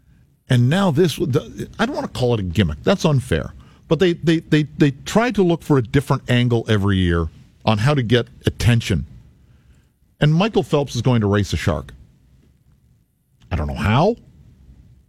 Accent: American